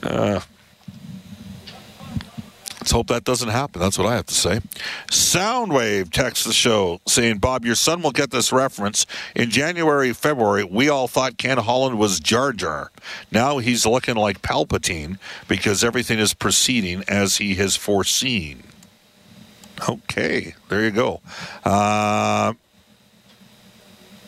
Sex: male